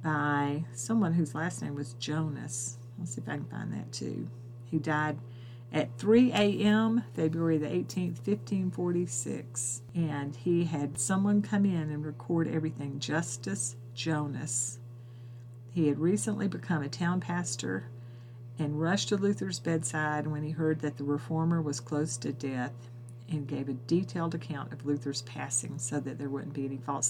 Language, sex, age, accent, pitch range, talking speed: English, female, 50-69, American, 120-165 Hz, 160 wpm